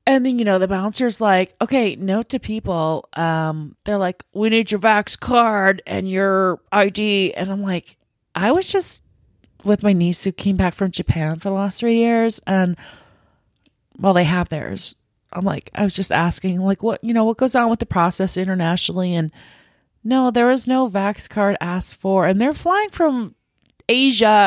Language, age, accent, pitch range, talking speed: English, 30-49, American, 175-215 Hz, 190 wpm